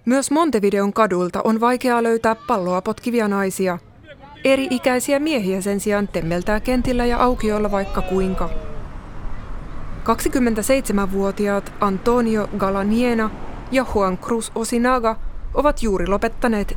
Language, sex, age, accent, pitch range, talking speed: Finnish, female, 20-39, native, 190-235 Hz, 105 wpm